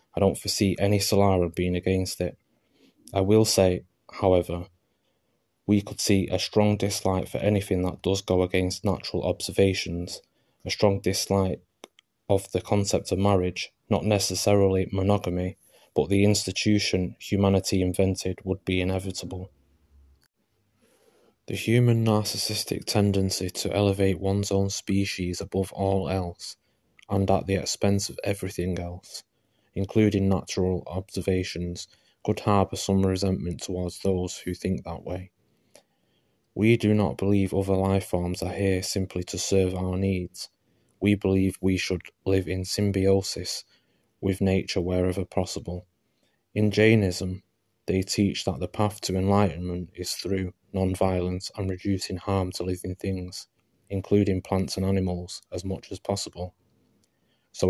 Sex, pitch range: male, 90-100 Hz